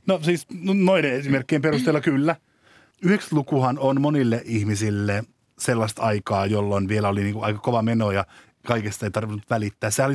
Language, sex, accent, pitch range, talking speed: Finnish, male, native, 105-135 Hz, 150 wpm